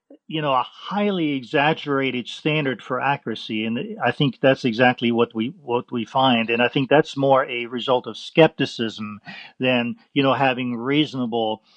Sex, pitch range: male, 130-175 Hz